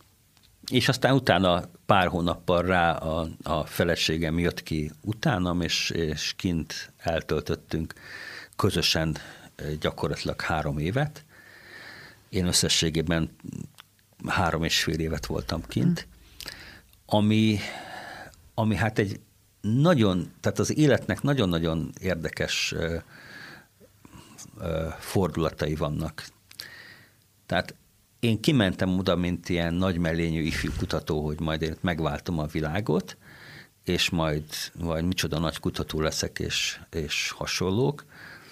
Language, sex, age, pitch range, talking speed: Hungarian, male, 50-69, 80-100 Hz, 105 wpm